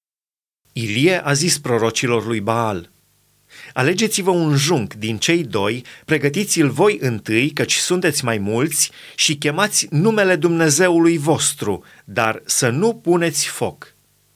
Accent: native